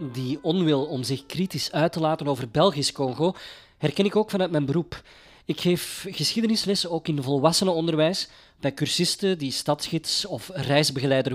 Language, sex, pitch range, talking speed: Dutch, male, 140-180 Hz, 155 wpm